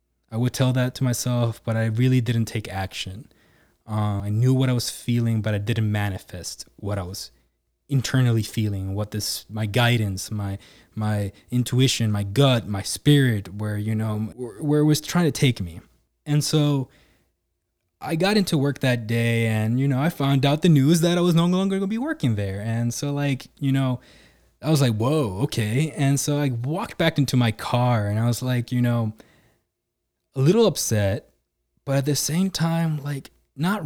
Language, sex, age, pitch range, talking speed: English, male, 20-39, 105-140 Hz, 195 wpm